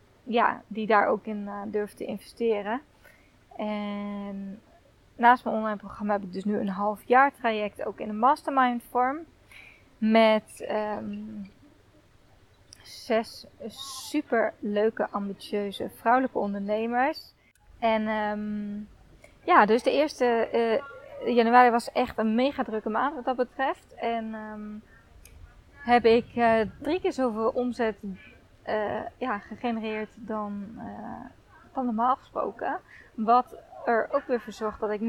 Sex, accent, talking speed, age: female, Dutch, 130 wpm, 20-39